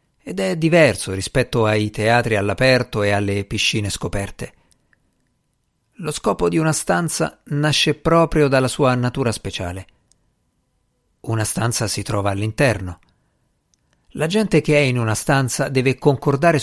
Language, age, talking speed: Italian, 50-69, 130 wpm